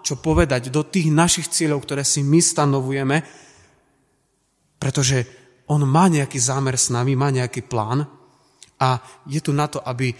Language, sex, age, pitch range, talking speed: Slovak, male, 30-49, 125-165 Hz, 155 wpm